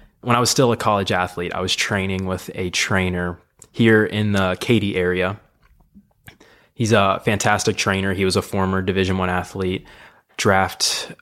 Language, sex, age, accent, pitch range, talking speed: English, male, 20-39, American, 90-100 Hz, 160 wpm